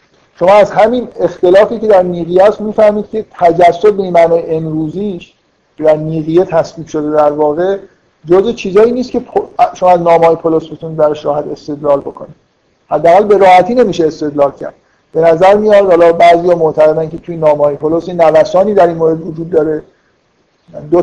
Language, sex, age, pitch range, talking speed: Persian, male, 50-69, 155-190 Hz, 155 wpm